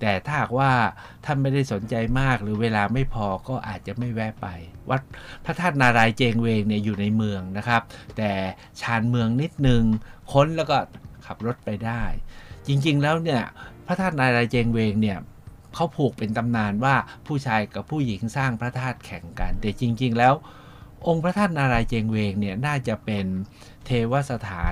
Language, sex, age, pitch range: Thai, male, 60-79, 100-125 Hz